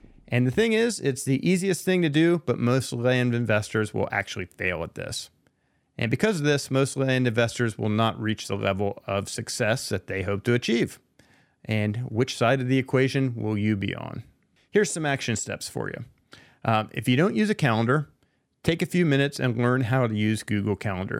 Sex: male